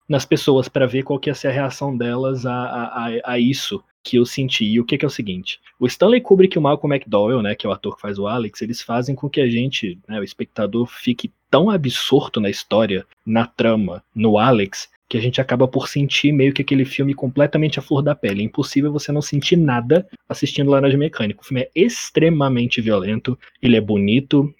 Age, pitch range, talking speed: 20-39, 125-165 Hz, 225 wpm